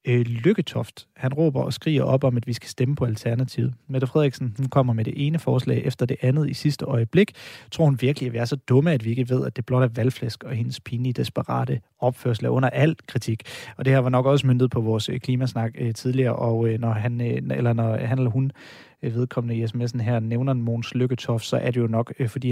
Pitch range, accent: 120-135 Hz, native